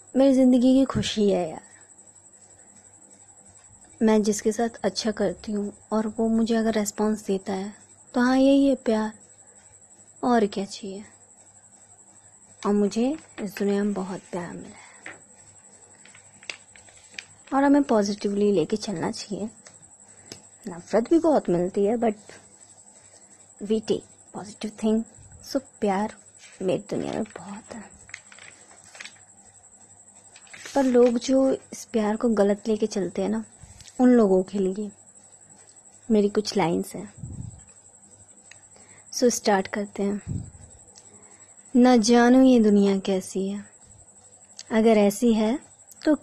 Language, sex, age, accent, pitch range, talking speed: Hindi, female, 20-39, native, 190-245 Hz, 120 wpm